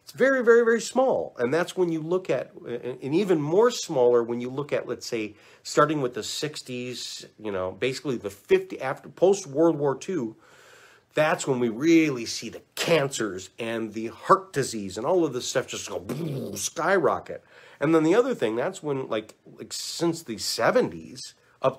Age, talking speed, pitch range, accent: 40-59, 185 wpm, 120-185 Hz, American